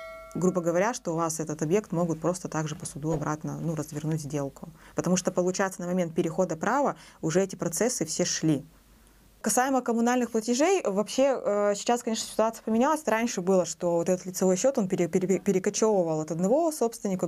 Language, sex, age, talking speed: Russian, female, 20-39, 165 wpm